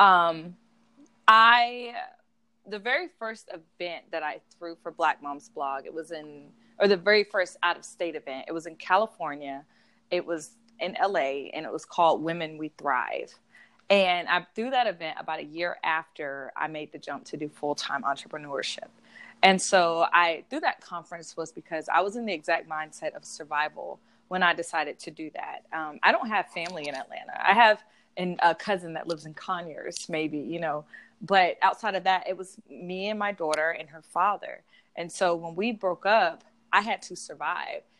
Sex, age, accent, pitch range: female, 20-39, American, 165-215 Hz